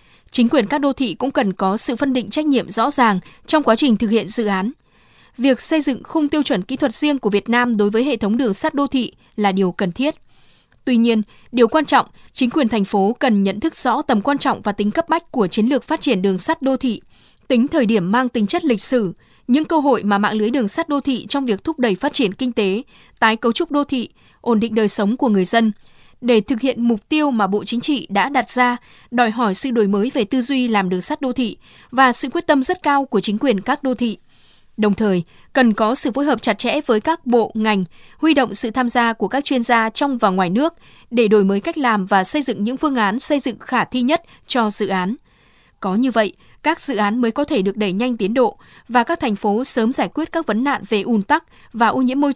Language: Vietnamese